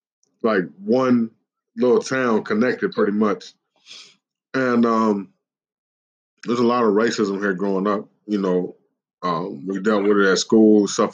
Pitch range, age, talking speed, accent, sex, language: 105-120 Hz, 20-39, 145 wpm, American, male, English